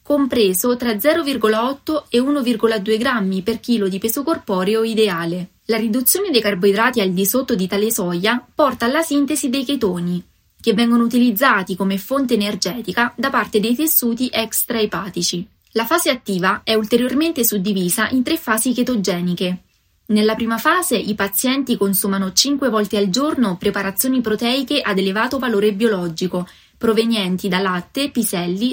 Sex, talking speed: female, 140 wpm